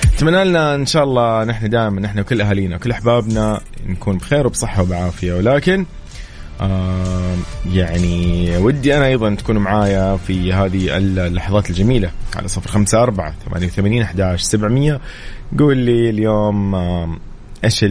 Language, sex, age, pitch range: English, male, 20-39, 90-110 Hz